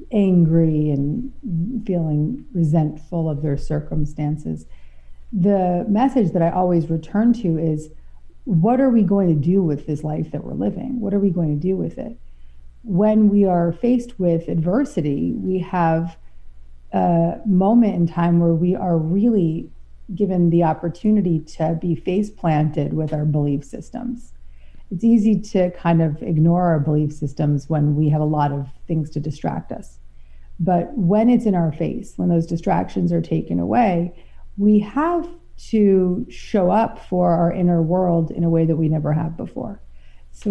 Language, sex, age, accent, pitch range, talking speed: English, female, 40-59, American, 155-190 Hz, 165 wpm